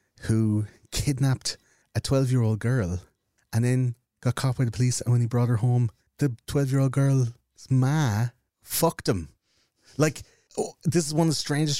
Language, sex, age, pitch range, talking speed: English, male, 30-49, 100-120 Hz, 160 wpm